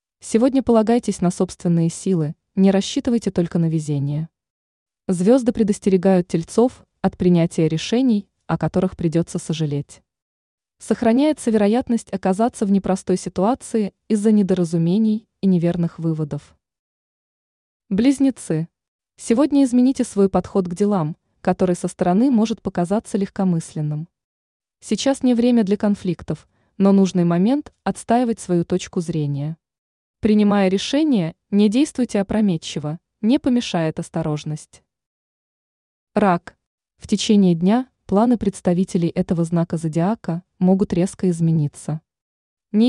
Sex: female